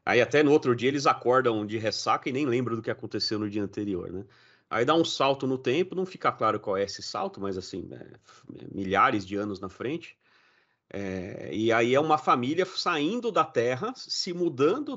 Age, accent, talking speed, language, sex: 40-59, Brazilian, 195 wpm, Portuguese, male